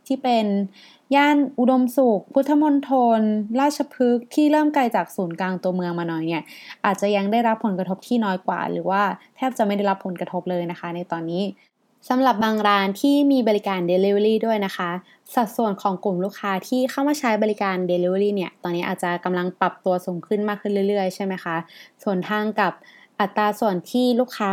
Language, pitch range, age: Thai, 185-230 Hz, 20-39